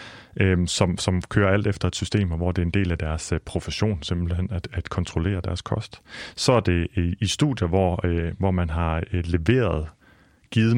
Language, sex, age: Danish, male, 30-49